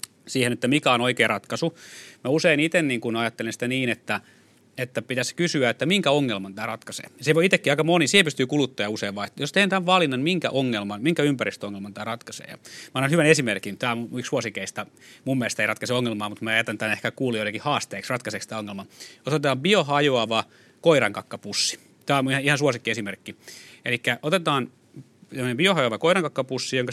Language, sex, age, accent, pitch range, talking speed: Finnish, male, 30-49, native, 115-150 Hz, 180 wpm